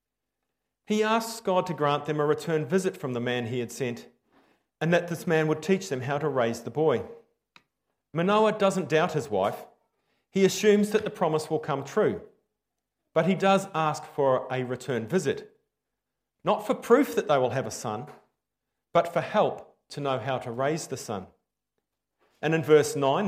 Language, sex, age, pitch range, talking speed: English, male, 40-59, 135-180 Hz, 185 wpm